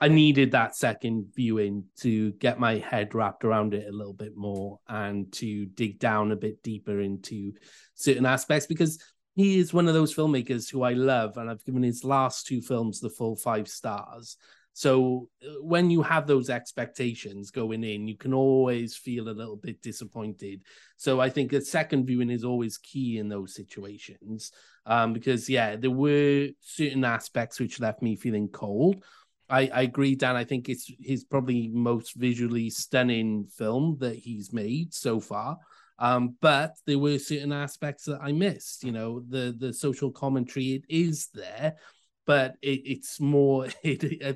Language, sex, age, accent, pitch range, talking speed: English, male, 30-49, British, 115-135 Hz, 170 wpm